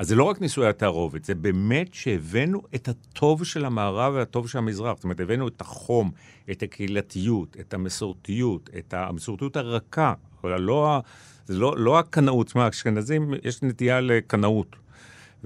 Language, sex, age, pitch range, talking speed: Hebrew, male, 50-69, 95-130 Hz, 150 wpm